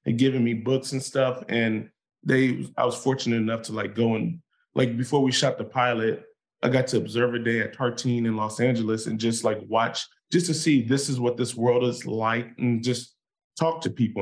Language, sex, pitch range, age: English, male, 110-130 Hz, 20-39